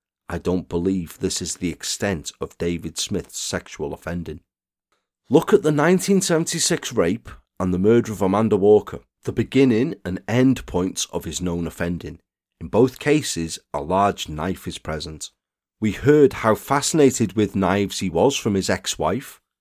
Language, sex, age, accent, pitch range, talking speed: English, male, 40-59, British, 90-125 Hz, 155 wpm